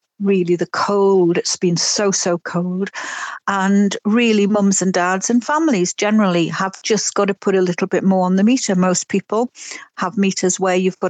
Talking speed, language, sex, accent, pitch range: 190 wpm, English, female, British, 185-205 Hz